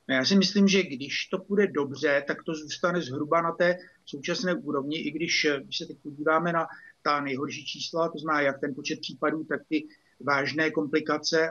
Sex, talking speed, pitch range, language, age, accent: male, 195 wpm, 150-170 Hz, Czech, 50-69, native